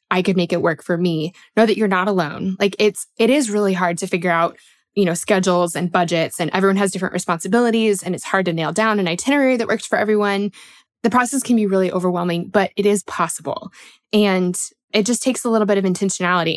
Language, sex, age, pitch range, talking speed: English, female, 20-39, 180-225 Hz, 225 wpm